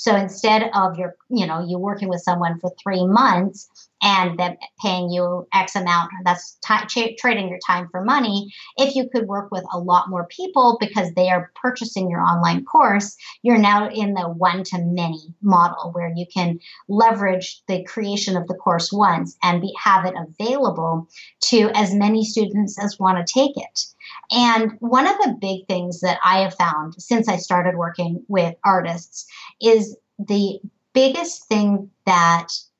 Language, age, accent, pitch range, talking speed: English, 40-59, American, 180-225 Hz, 175 wpm